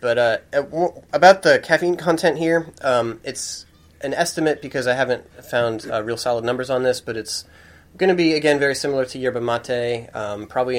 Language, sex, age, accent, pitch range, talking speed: English, male, 30-49, American, 100-125 Hz, 190 wpm